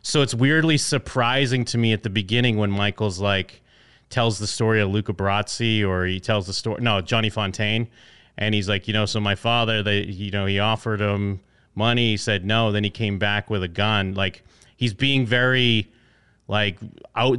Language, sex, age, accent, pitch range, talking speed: English, male, 30-49, American, 105-125 Hz, 195 wpm